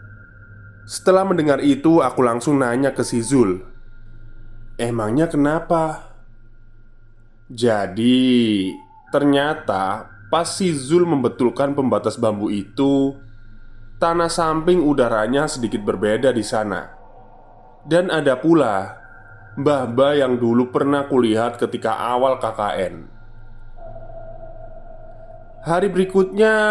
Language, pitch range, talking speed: Indonesian, 110-140 Hz, 90 wpm